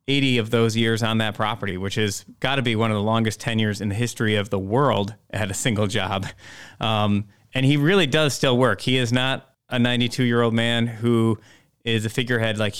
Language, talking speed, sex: English, 220 wpm, male